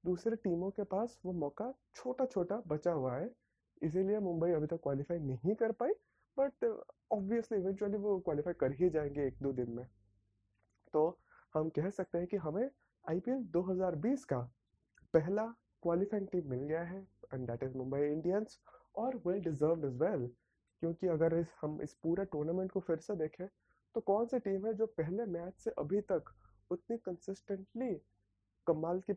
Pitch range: 145-200 Hz